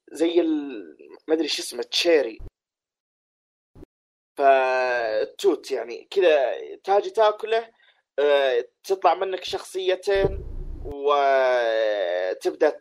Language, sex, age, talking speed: Arabic, male, 20-39, 70 wpm